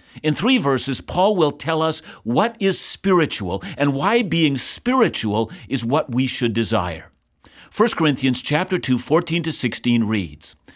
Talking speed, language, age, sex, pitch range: 150 wpm, English, 50-69, male, 115-160 Hz